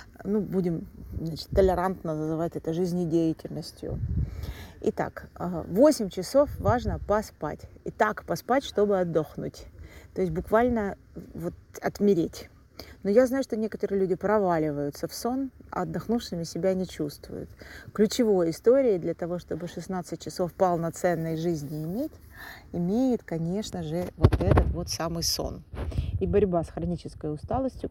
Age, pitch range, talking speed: 30-49, 160-205 Hz, 125 wpm